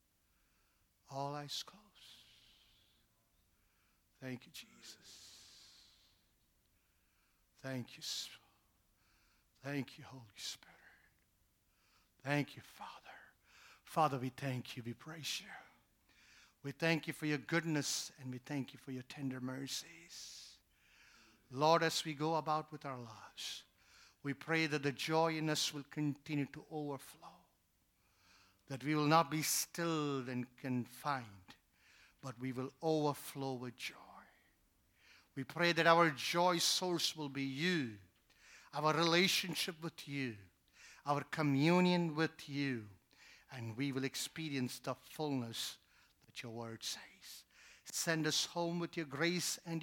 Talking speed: 125 wpm